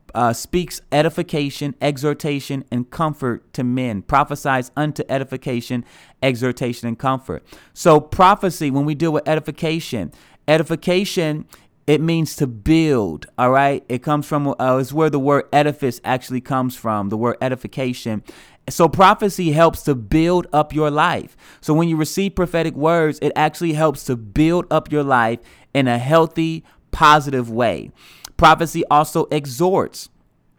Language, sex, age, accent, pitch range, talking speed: English, male, 30-49, American, 140-160 Hz, 145 wpm